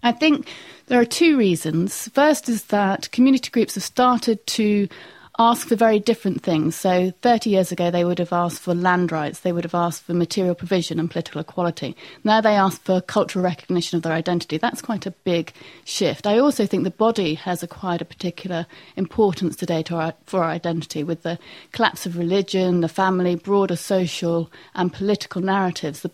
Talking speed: 185 wpm